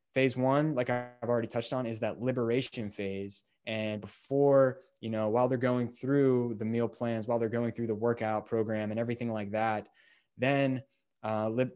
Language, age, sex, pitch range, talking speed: English, 20-39, male, 110-125 Hz, 185 wpm